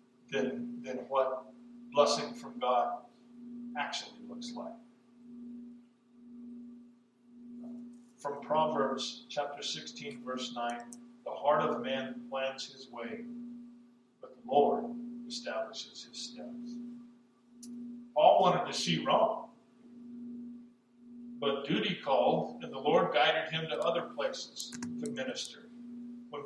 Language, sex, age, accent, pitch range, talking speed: English, male, 50-69, American, 170-240 Hz, 105 wpm